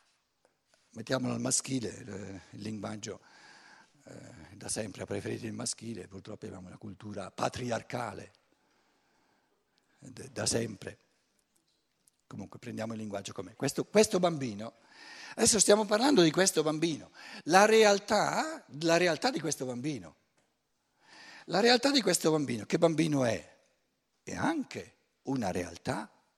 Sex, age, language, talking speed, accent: male, 60-79, Italian, 125 wpm, native